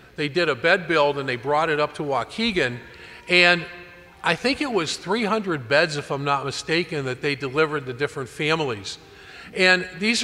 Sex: male